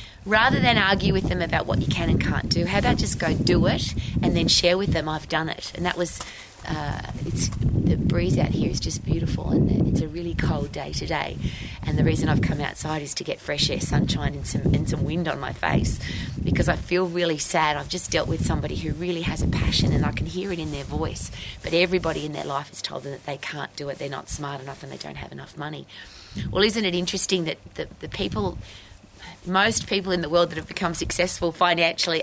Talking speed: 240 wpm